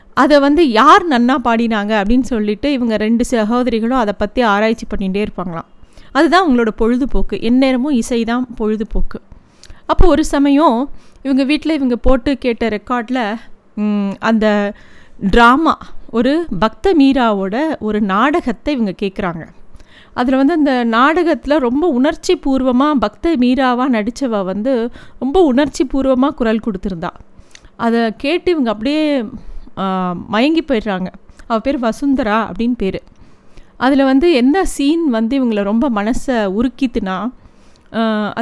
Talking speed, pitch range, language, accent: 115 wpm, 215-270 Hz, Tamil, native